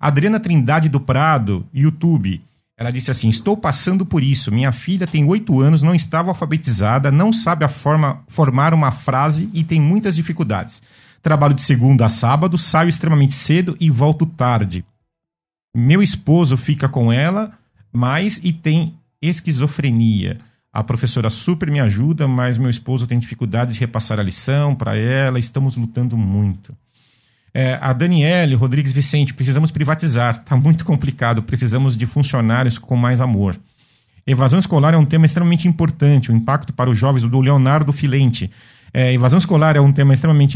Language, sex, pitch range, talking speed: Portuguese, male, 125-155 Hz, 160 wpm